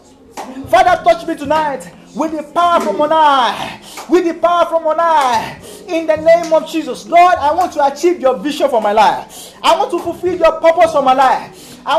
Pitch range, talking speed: 280-345 Hz, 205 wpm